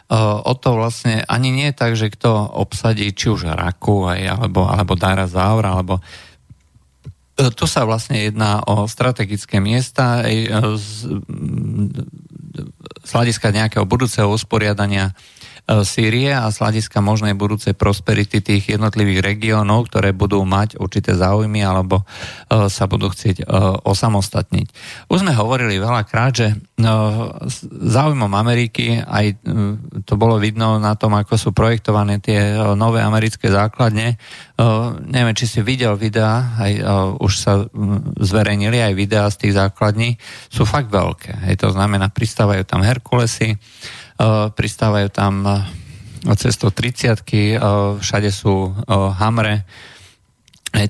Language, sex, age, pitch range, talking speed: Slovak, male, 40-59, 100-115 Hz, 125 wpm